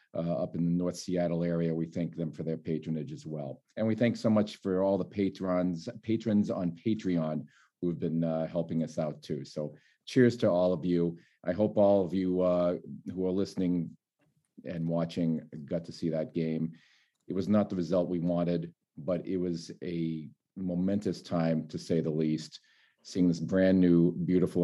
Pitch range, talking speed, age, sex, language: 85-100 Hz, 190 wpm, 40-59, male, English